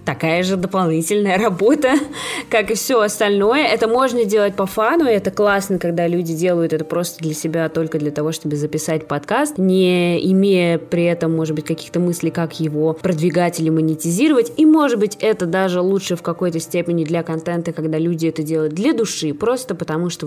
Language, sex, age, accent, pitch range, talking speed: Russian, female, 20-39, native, 155-185 Hz, 180 wpm